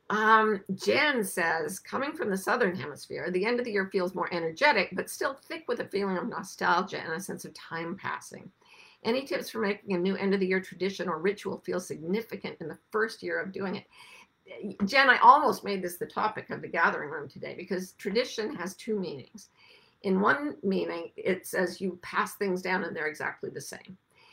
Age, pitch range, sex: 50-69, 185-250 Hz, female